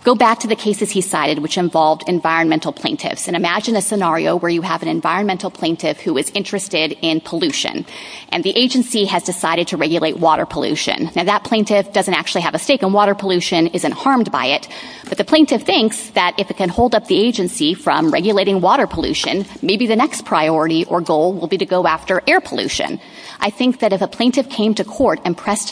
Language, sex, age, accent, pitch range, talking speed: English, female, 30-49, American, 175-225 Hz, 210 wpm